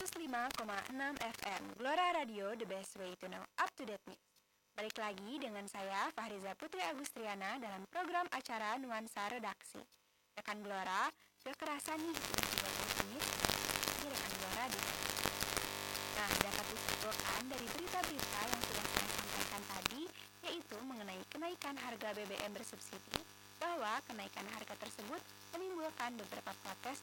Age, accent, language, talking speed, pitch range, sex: 20-39, native, Indonesian, 130 wpm, 205-315 Hz, female